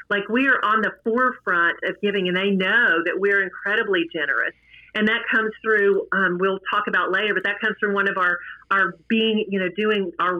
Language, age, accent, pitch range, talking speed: English, 40-59, American, 185-220 Hz, 215 wpm